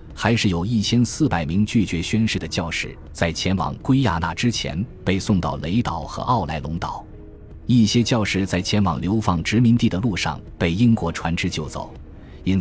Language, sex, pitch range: Chinese, male, 80-110 Hz